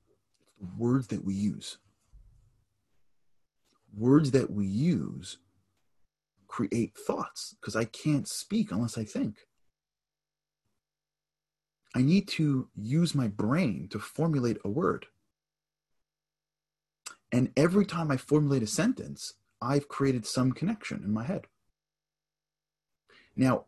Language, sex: English, male